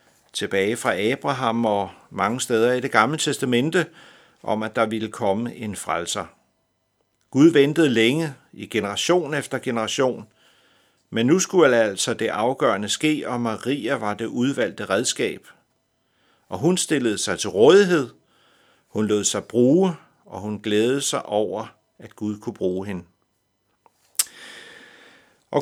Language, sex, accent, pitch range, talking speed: Danish, male, native, 105-140 Hz, 135 wpm